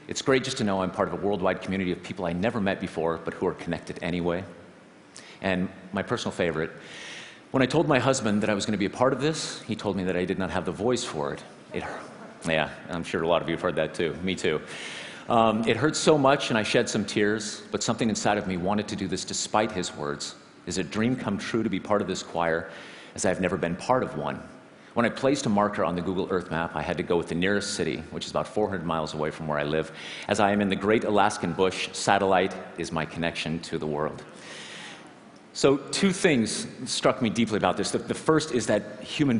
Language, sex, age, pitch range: Chinese, male, 40-59, 85-115 Hz